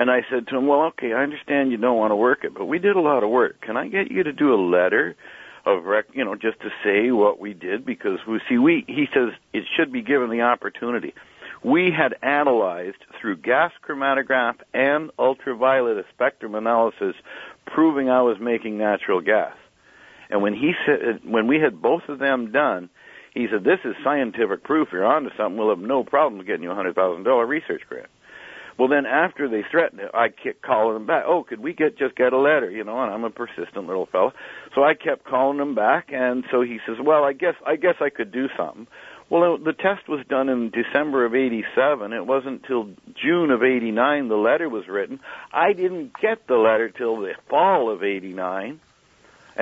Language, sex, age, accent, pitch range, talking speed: English, male, 60-79, American, 115-145 Hz, 210 wpm